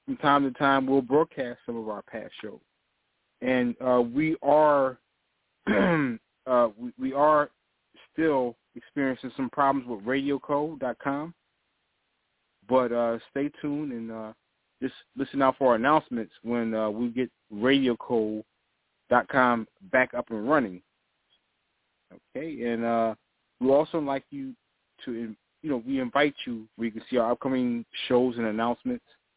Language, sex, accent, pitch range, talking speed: English, male, American, 115-140 Hz, 140 wpm